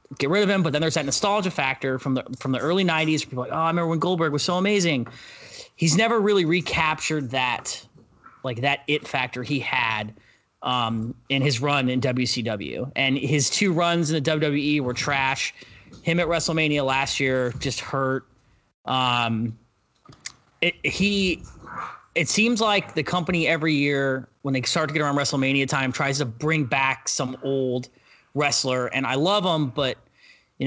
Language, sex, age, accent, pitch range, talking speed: English, male, 30-49, American, 130-160 Hz, 180 wpm